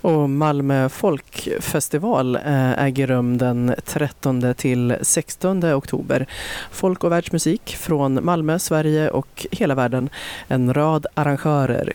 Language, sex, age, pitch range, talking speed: Swedish, female, 30-49, 125-150 Hz, 100 wpm